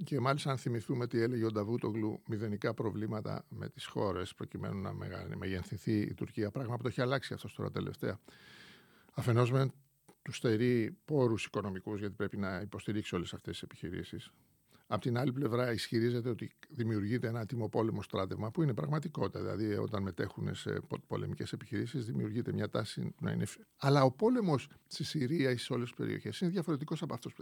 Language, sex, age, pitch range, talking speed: Greek, male, 50-69, 110-145 Hz, 170 wpm